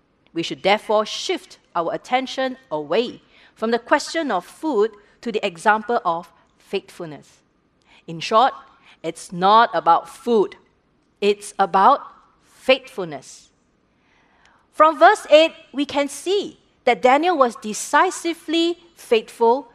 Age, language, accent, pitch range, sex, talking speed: 40-59, English, Malaysian, 205-300 Hz, female, 110 wpm